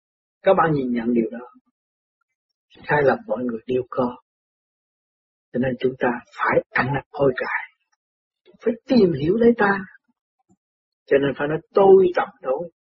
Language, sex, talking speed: Vietnamese, male, 155 wpm